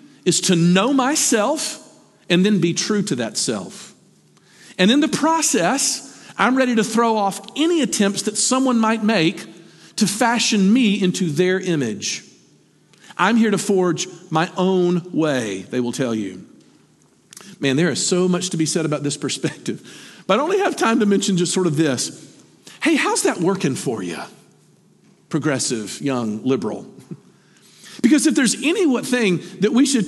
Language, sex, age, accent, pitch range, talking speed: English, male, 50-69, American, 180-265 Hz, 160 wpm